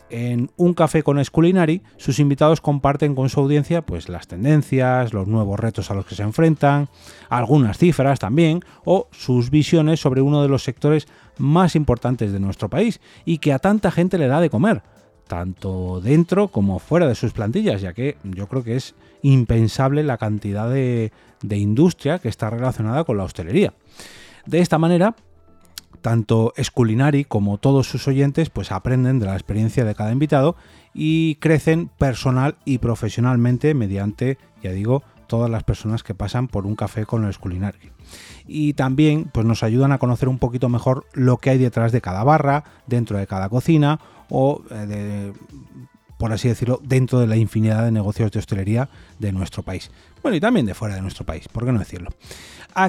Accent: Spanish